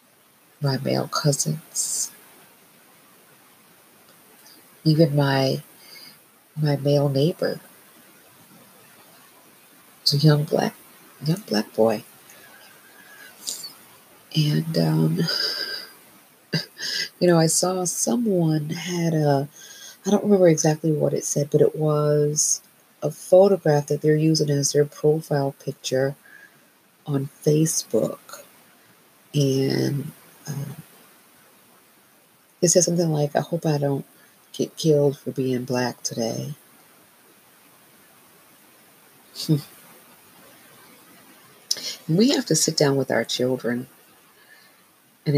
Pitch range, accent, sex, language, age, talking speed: 135-160 Hz, American, female, English, 40-59, 95 wpm